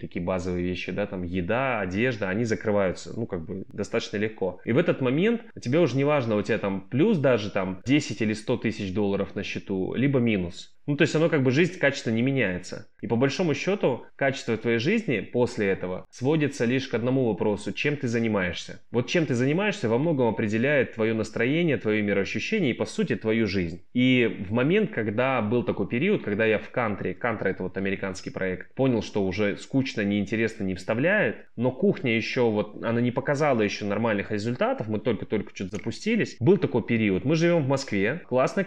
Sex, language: male, Russian